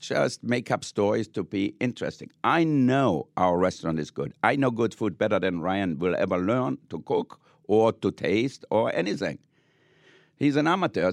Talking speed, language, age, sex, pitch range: 180 wpm, English, 60-79, male, 110-150 Hz